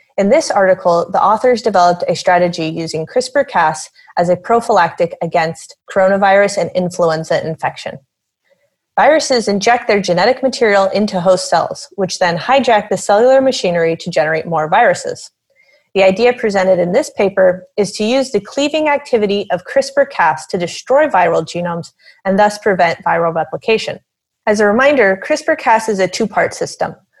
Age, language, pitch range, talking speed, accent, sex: 30-49, English, 180-245 Hz, 150 wpm, American, female